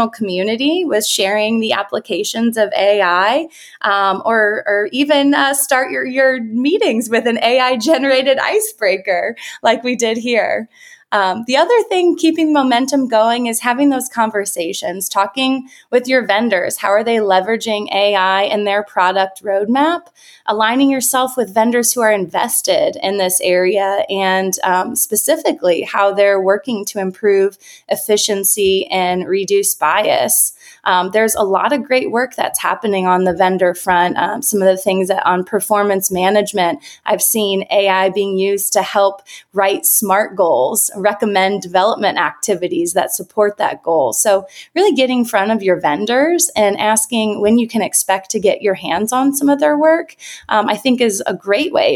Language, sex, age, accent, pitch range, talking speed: English, female, 20-39, American, 195-250 Hz, 160 wpm